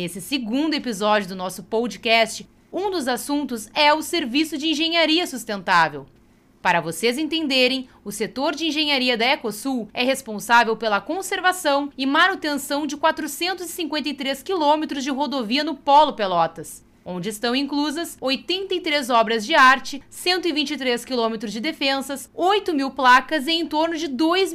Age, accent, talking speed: 20-39, Brazilian, 140 wpm